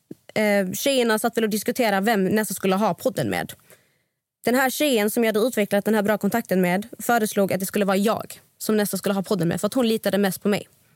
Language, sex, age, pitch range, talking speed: Swedish, female, 20-39, 195-235 Hz, 230 wpm